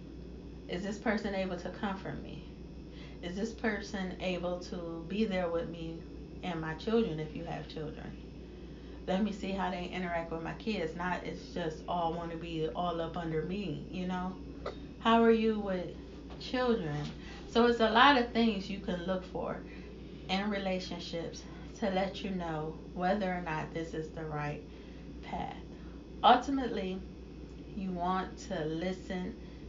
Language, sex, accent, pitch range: English, female, American, 165-195 Hz